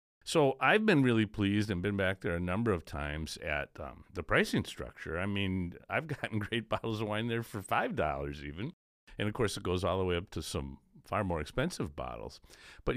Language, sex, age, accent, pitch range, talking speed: English, male, 50-69, American, 85-115 Hz, 215 wpm